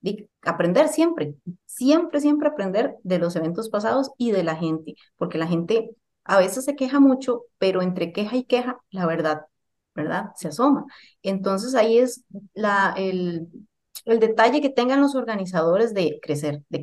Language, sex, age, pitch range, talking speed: Spanish, female, 30-49, 175-240 Hz, 160 wpm